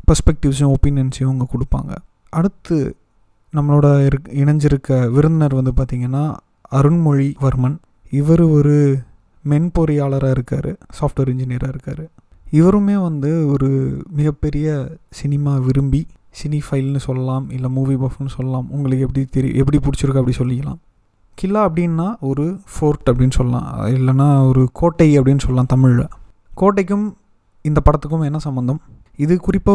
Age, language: 30-49, Tamil